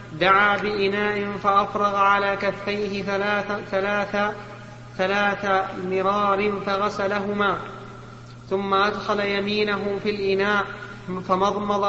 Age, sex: 30-49, male